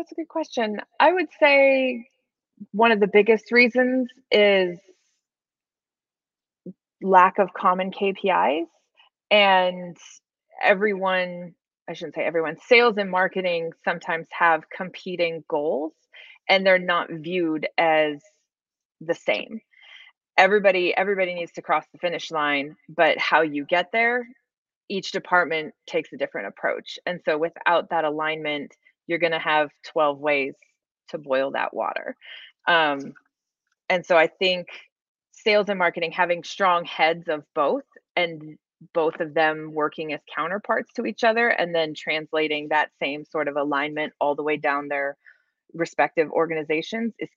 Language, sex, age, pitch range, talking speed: English, female, 20-39, 160-225 Hz, 140 wpm